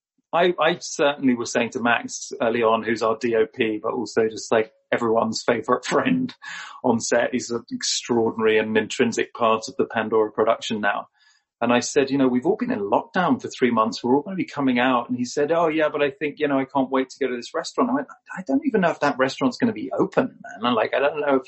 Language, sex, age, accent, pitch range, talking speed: English, male, 40-59, British, 120-160 Hz, 250 wpm